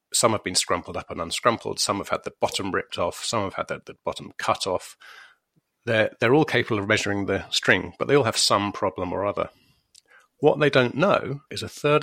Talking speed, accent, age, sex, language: 225 wpm, British, 30-49, male, English